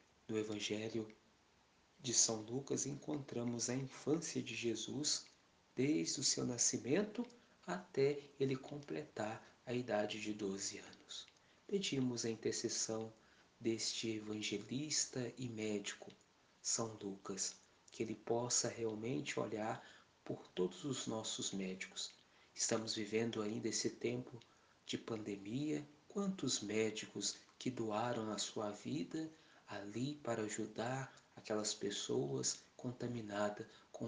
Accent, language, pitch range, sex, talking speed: Brazilian, Portuguese, 105-120 Hz, male, 110 wpm